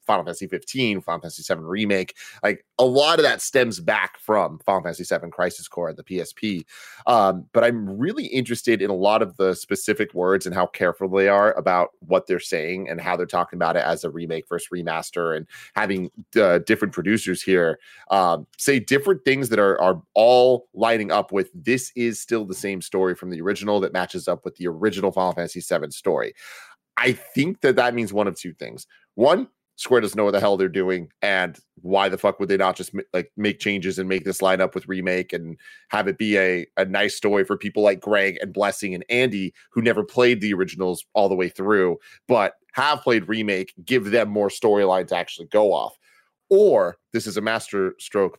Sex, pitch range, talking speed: male, 90-115 Hz, 210 wpm